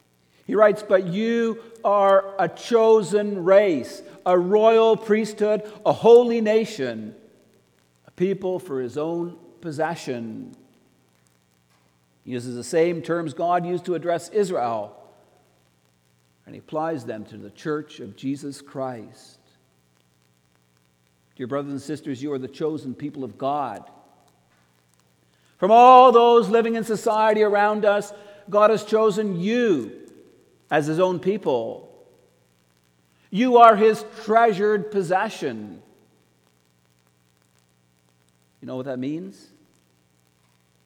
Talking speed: 115 wpm